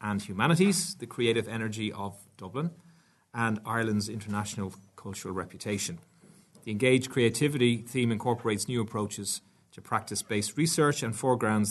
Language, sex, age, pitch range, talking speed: English, male, 30-49, 100-135 Hz, 125 wpm